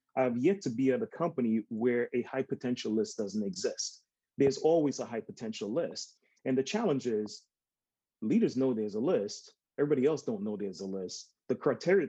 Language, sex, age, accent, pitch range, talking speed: English, male, 30-49, American, 115-140 Hz, 190 wpm